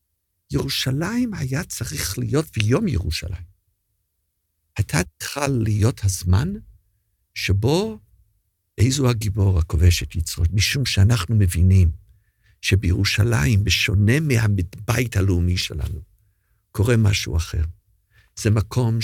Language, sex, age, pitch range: Hebrew, male, 50-69, 90-115 Hz